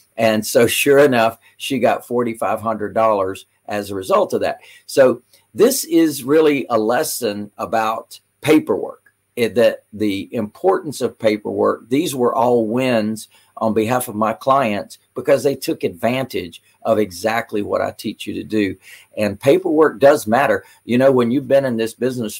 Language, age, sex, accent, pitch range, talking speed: English, 50-69, male, American, 110-130 Hz, 155 wpm